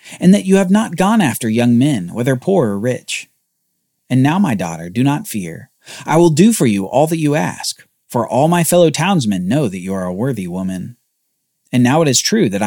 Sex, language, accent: male, English, American